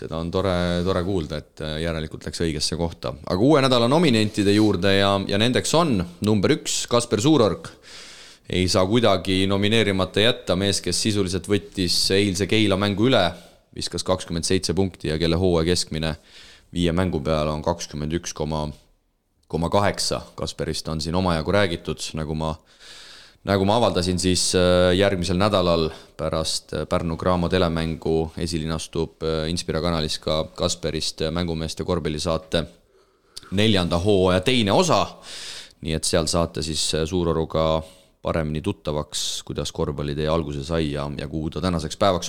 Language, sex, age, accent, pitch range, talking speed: English, male, 30-49, Finnish, 80-100 Hz, 140 wpm